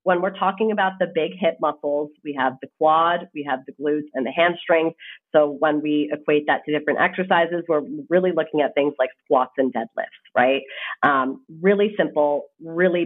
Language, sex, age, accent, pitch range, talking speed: English, female, 30-49, American, 140-165 Hz, 190 wpm